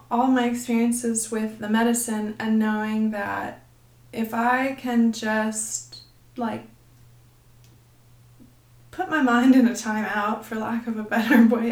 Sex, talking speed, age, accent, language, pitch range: female, 140 wpm, 20-39, American, English, 205-235 Hz